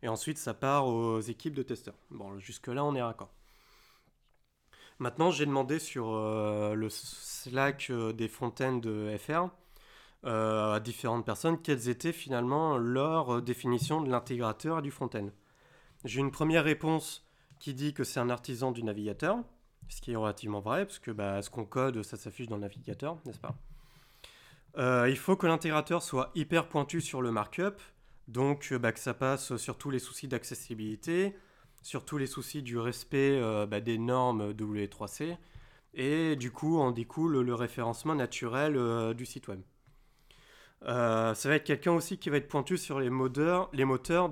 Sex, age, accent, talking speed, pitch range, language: male, 30-49, French, 175 wpm, 115-150 Hz, French